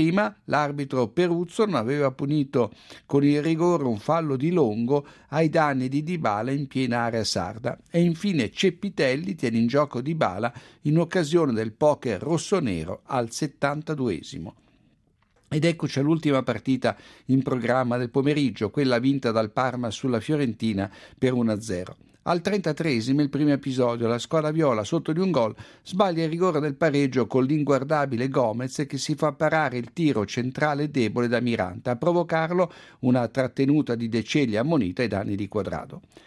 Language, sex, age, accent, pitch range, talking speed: Italian, male, 60-79, native, 125-160 Hz, 155 wpm